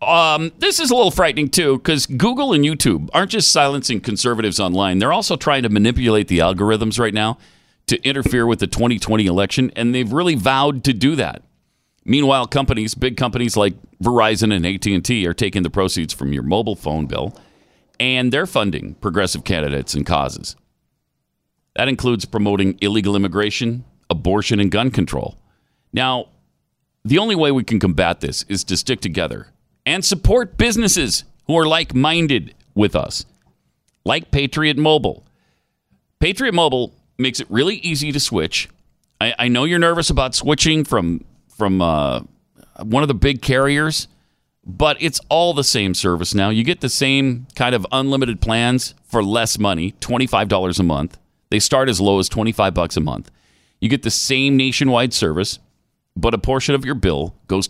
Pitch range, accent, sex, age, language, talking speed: 100-140 Hz, American, male, 40-59, English, 165 wpm